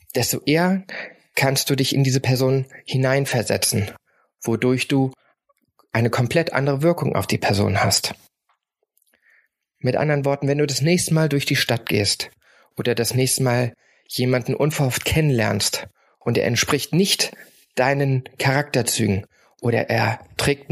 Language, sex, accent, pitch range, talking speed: German, male, German, 115-140 Hz, 135 wpm